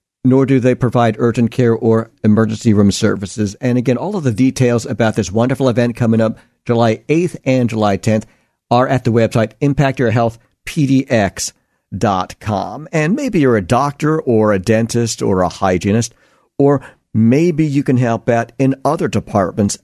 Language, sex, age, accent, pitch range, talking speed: English, male, 50-69, American, 110-140 Hz, 155 wpm